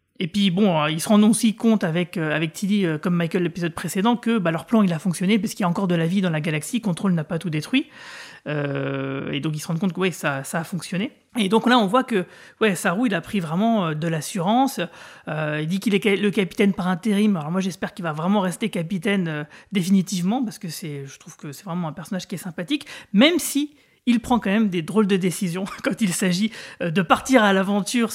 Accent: French